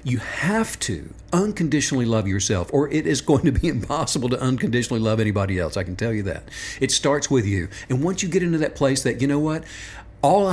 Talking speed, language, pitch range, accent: 220 wpm, English, 110-165 Hz, American